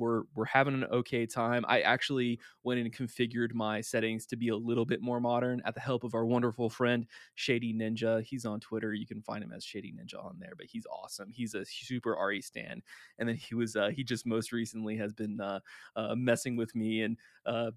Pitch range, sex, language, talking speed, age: 115-135 Hz, male, English, 225 wpm, 20-39